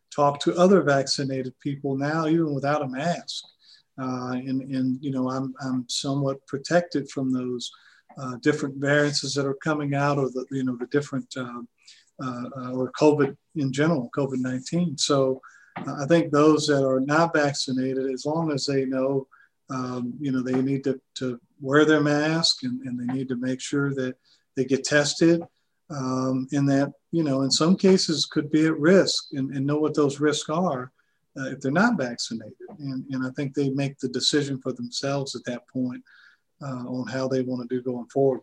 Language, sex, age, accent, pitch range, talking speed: English, male, 40-59, American, 130-150 Hz, 190 wpm